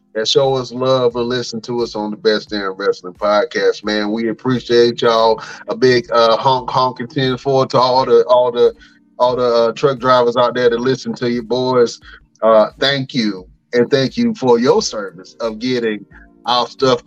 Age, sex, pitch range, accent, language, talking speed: 30-49, male, 120-150 Hz, American, English, 195 wpm